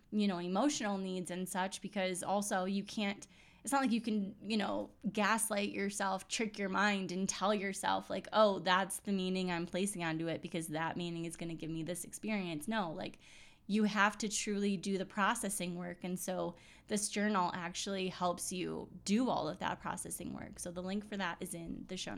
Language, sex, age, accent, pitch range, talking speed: English, female, 10-29, American, 180-210 Hz, 205 wpm